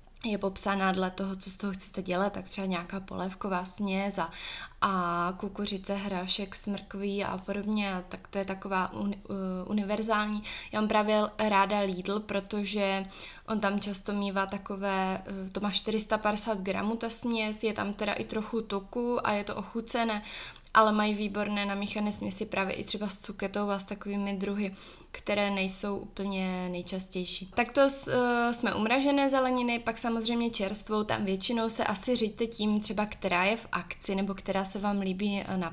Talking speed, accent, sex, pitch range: 160 wpm, native, female, 195-210 Hz